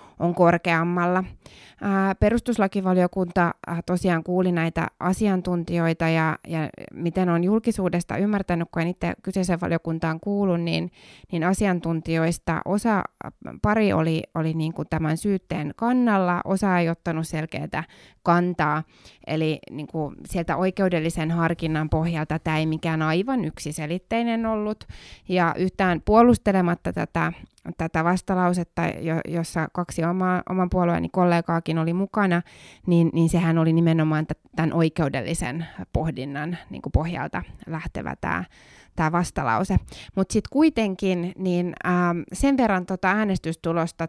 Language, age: Finnish, 20-39